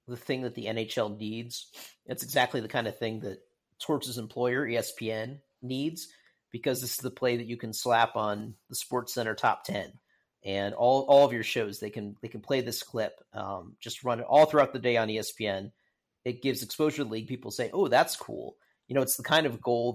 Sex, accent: male, American